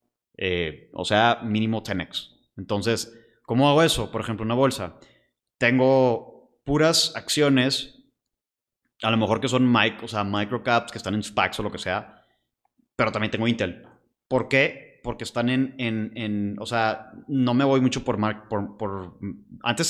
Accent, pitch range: Mexican, 105-130 Hz